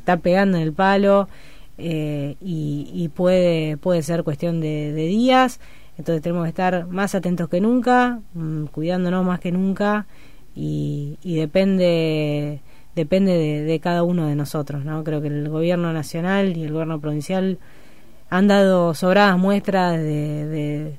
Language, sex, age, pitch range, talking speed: Spanish, female, 20-39, 155-185 Hz, 155 wpm